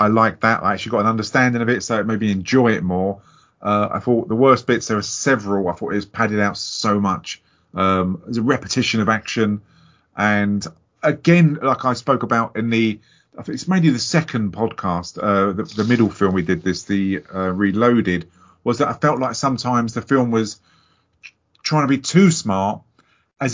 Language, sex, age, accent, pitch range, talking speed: English, male, 40-59, British, 100-130 Hz, 210 wpm